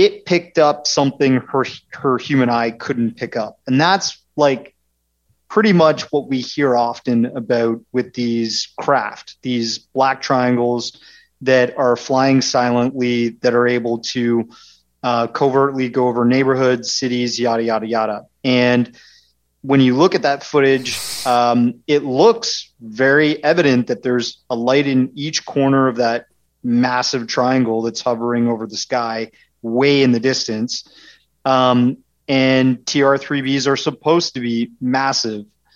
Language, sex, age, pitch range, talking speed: English, male, 30-49, 120-135 Hz, 145 wpm